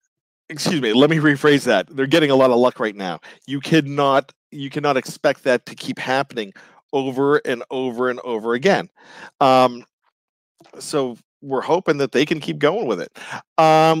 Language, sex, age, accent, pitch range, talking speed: English, male, 40-59, American, 140-170 Hz, 175 wpm